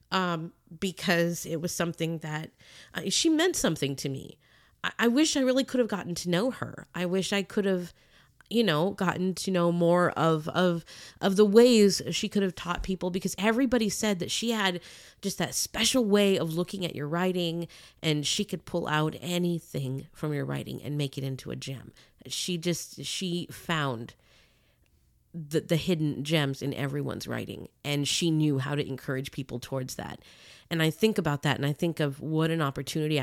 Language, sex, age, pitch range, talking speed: English, female, 30-49, 145-200 Hz, 190 wpm